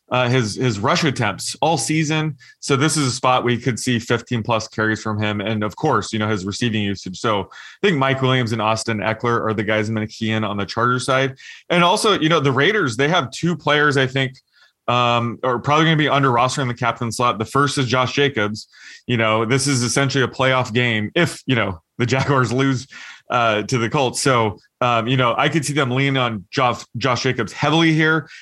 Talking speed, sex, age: 230 wpm, male, 20-39